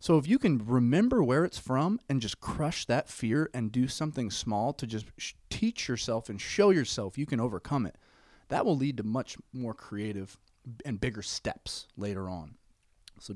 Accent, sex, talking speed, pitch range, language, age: American, male, 185 wpm, 105-155 Hz, English, 30-49